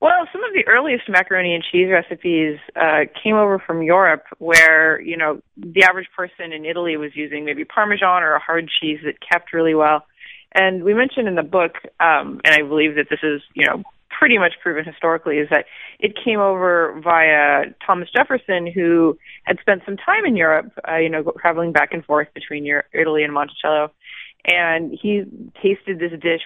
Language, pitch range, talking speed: English, 155-200 Hz, 195 wpm